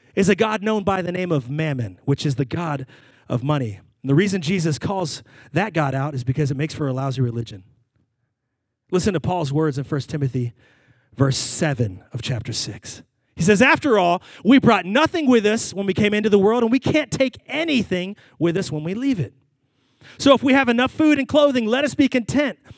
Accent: American